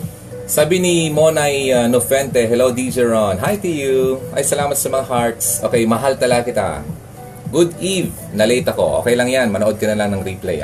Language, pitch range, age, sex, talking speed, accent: Filipino, 100-125 Hz, 20-39, male, 190 wpm, native